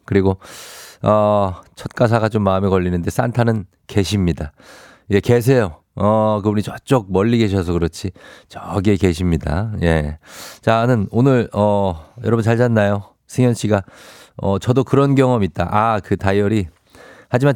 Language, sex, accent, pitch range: Korean, male, native, 95-125 Hz